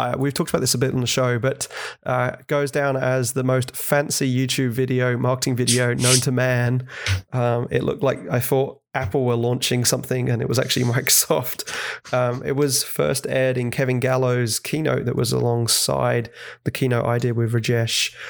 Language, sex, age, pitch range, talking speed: English, male, 20-39, 120-130 Hz, 190 wpm